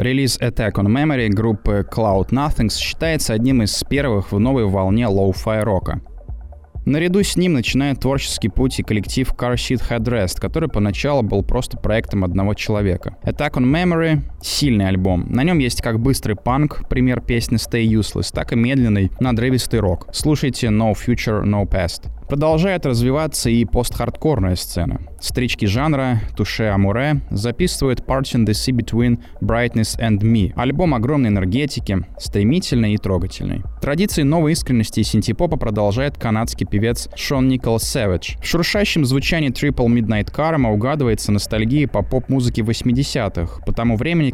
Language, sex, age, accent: Russian, male, 20-39, native